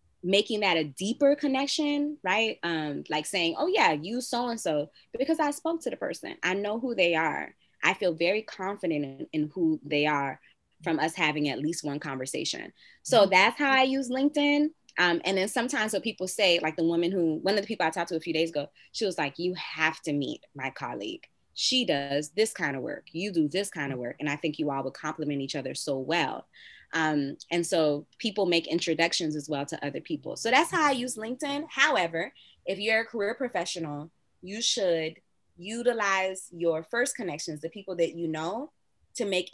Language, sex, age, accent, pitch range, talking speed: English, female, 20-39, American, 155-205 Hz, 205 wpm